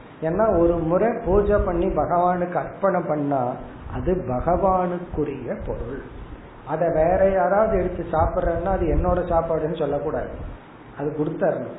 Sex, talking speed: male, 100 wpm